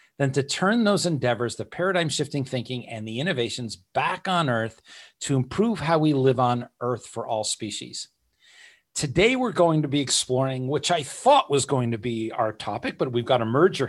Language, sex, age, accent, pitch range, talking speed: English, male, 40-59, American, 125-175 Hz, 195 wpm